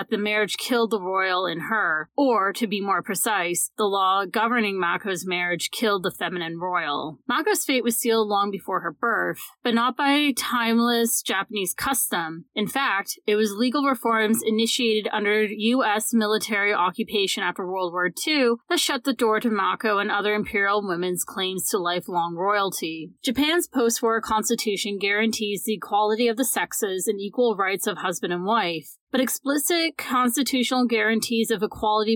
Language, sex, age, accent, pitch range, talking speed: English, female, 30-49, American, 200-245 Hz, 160 wpm